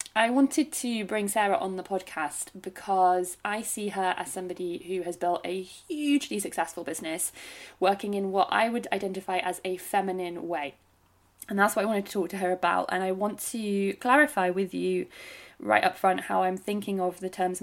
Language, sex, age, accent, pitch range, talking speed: English, female, 20-39, British, 175-205 Hz, 195 wpm